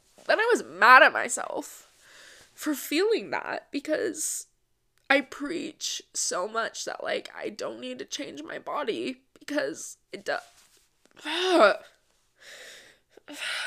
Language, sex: English, female